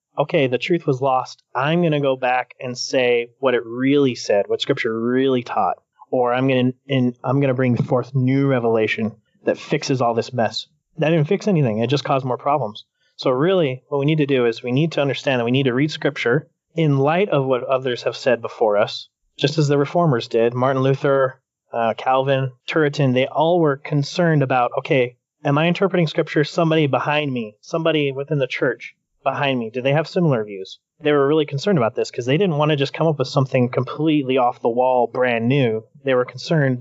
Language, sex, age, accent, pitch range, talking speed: English, male, 30-49, American, 125-150 Hz, 210 wpm